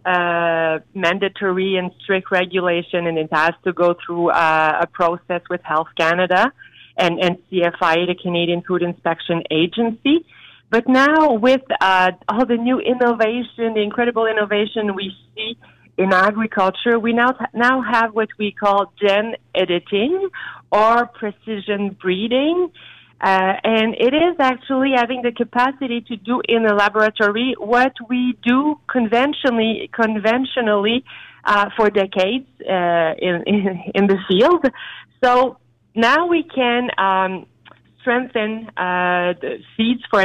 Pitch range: 185-240 Hz